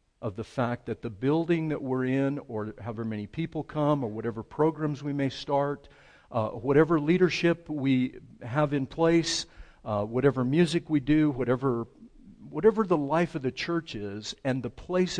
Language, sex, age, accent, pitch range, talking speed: English, male, 50-69, American, 120-160 Hz, 170 wpm